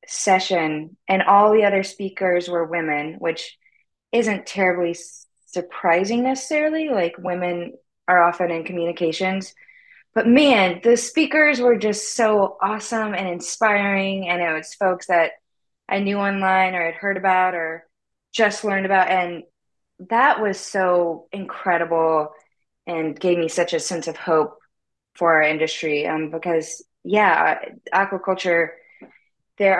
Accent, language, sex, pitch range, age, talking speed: American, English, female, 165-205 Hz, 20-39, 135 wpm